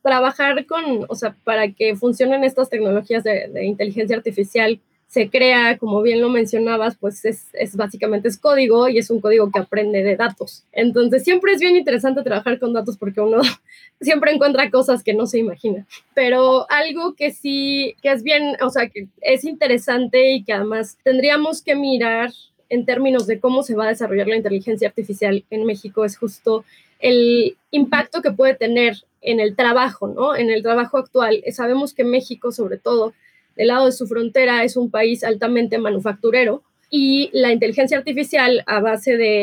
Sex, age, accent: female, 20-39, Mexican